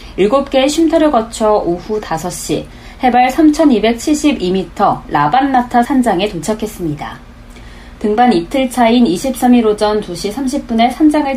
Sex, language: female, Korean